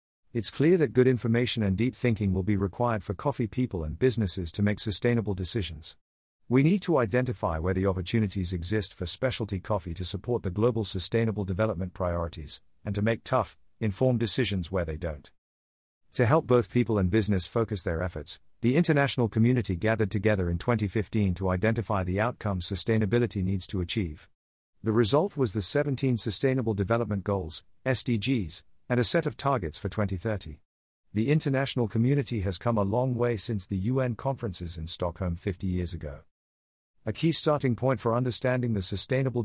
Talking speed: 170 wpm